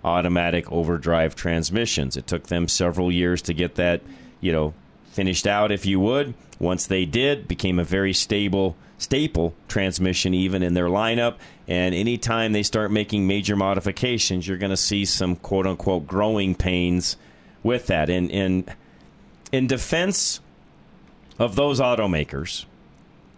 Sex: male